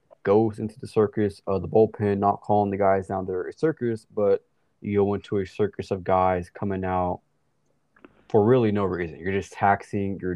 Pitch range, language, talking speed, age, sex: 95-110 Hz, English, 190 wpm, 20-39, male